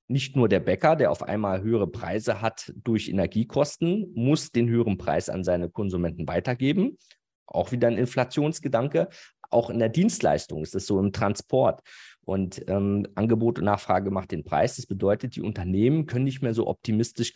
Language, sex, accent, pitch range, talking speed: German, male, German, 95-125 Hz, 175 wpm